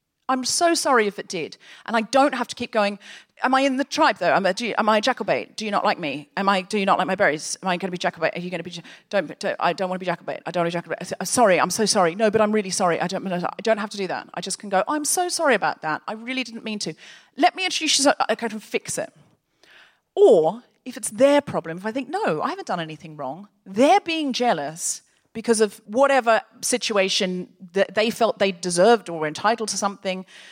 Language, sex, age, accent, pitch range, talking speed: English, female, 40-59, British, 175-230 Hz, 265 wpm